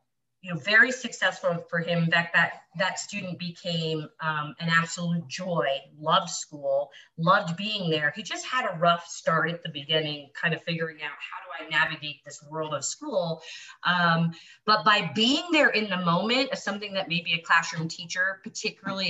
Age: 30-49